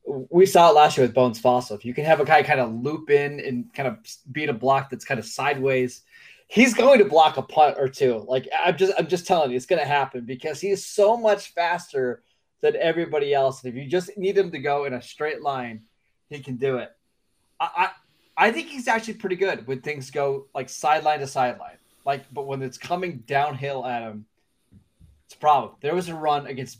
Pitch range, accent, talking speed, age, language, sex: 125-170 Hz, American, 230 wpm, 20-39, English, male